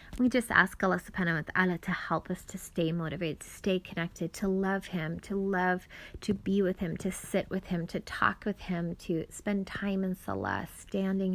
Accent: American